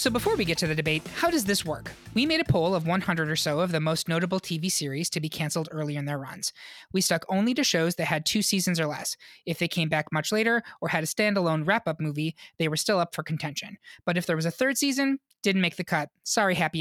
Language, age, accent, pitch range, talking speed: English, 20-39, American, 160-220 Hz, 265 wpm